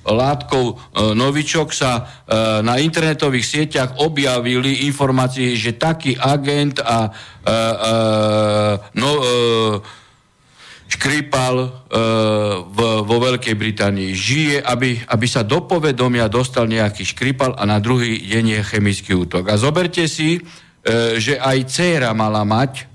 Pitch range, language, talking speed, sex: 115-155 Hz, Slovak, 120 wpm, male